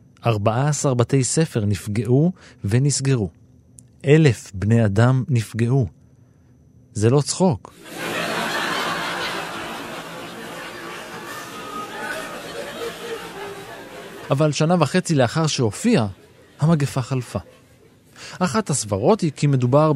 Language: Hebrew